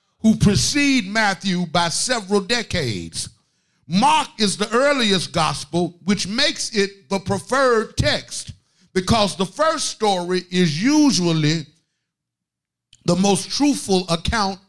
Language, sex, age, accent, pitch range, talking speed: English, male, 50-69, American, 170-230 Hz, 110 wpm